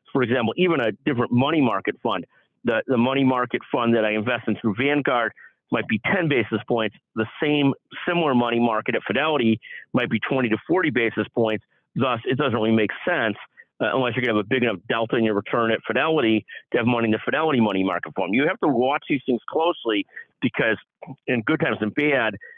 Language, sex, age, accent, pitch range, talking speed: English, male, 50-69, American, 110-140 Hz, 215 wpm